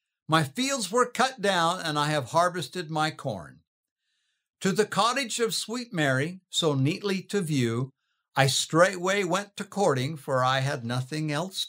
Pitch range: 155-220 Hz